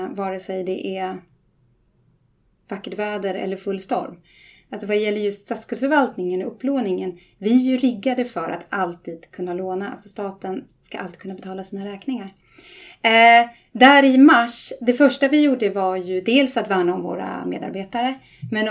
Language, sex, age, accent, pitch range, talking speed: Swedish, female, 30-49, native, 185-240 Hz, 160 wpm